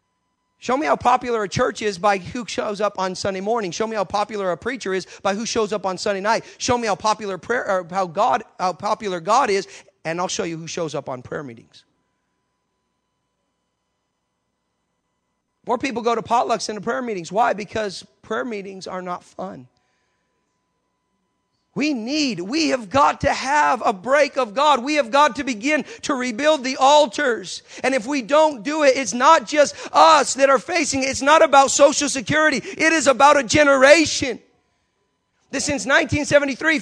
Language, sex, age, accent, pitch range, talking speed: English, male, 40-59, American, 200-285 Hz, 185 wpm